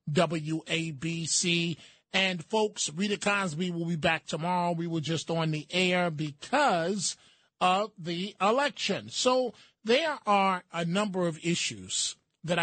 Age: 30-49